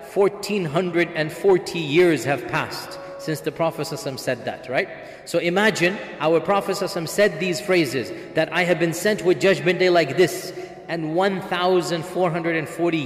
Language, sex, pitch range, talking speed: English, male, 140-180 Hz, 135 wpm